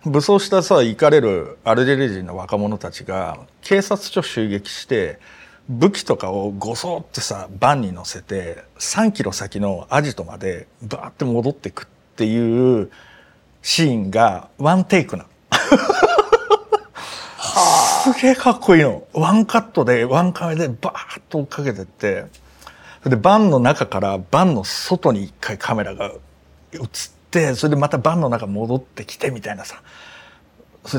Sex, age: male, 50-69